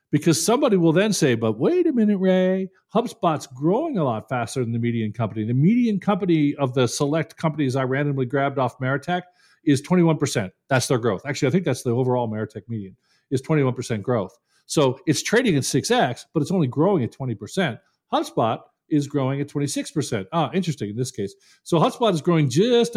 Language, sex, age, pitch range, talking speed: English, male, 50-69, 130-180 Hz, 205 wpm